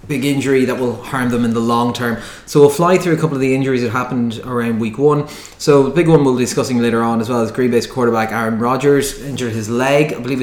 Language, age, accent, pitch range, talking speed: English, 20-39, Irish, 115-130 Hz, 265 wpm